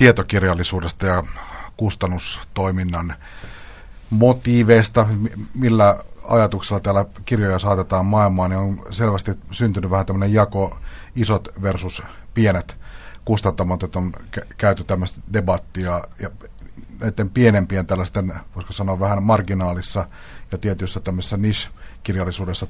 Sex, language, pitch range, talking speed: male, Finnish, 90-110 Hz, 105 wpm